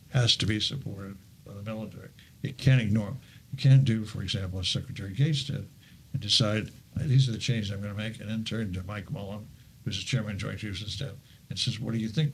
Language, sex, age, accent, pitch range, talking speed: English, male, 60-79, American, 110-135 Hz, 250 wpm